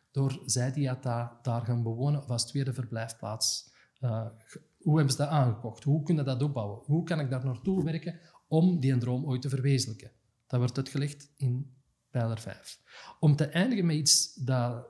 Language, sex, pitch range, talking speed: Dutch, male, 120-150 Hz, 185 wpm